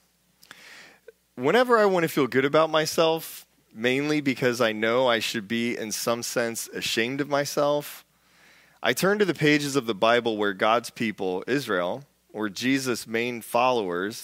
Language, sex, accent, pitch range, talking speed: English, male, American, 95-130 Hz, 155 wpm